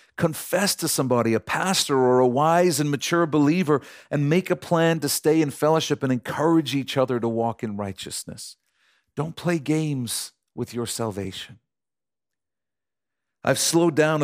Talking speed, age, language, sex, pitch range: 150 wpm, 50-69, English, male, 110-145 Hz